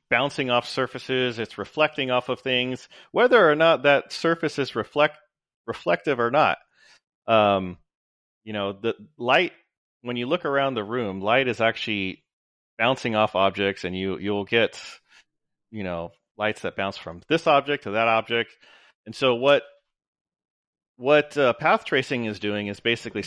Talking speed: 155 wpm